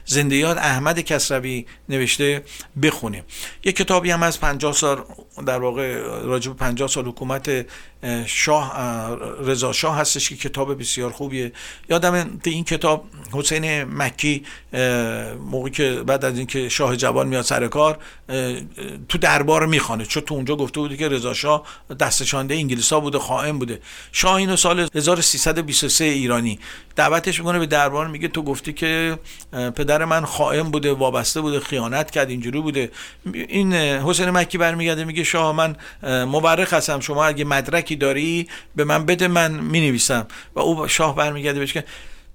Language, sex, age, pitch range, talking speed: Persian, male, 50-69, 135-160 Hz, 145 wpm